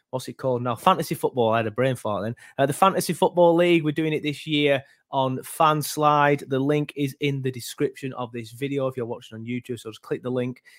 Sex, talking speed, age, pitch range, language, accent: male, 240 wpm, 20-39, 115-135 Hz, English, British